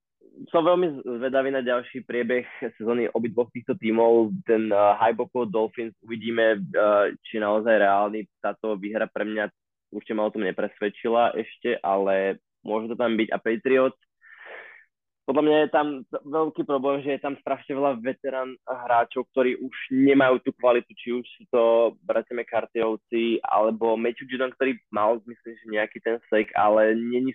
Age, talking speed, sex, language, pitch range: 20-39, 160 wpm, male, Slovak, 105-130 Hz